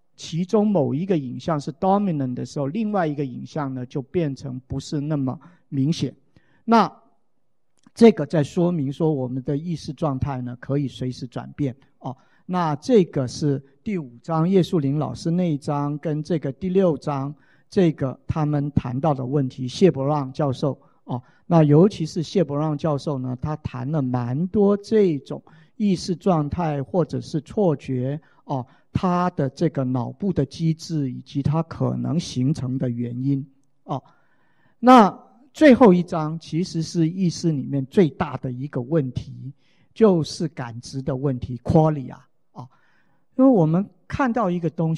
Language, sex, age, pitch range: Chinese, male, 50-69, 135-175 Hz